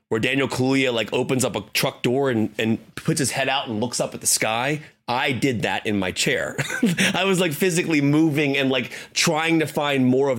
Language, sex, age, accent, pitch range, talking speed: English, male, 30-49, American, 115-145 Hz, 225 wpm